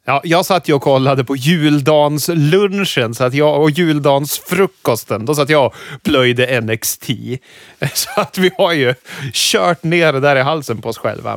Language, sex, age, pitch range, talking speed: Swedish, male, 30-49, 130-165 Hz, 160 wpm